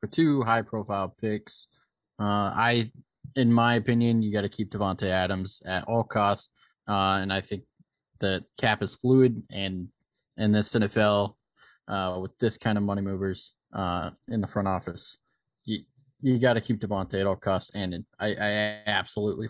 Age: 20-39